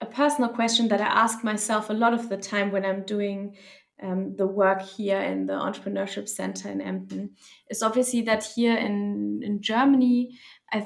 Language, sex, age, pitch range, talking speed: German, female, 20-39, 195-230 Hz, 180 wpm